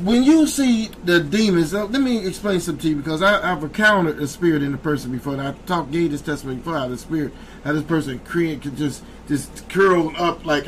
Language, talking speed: English, 225 wpm